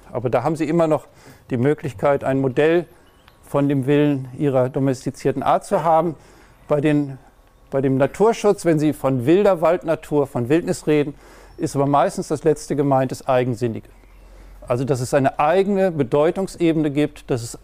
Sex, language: male, German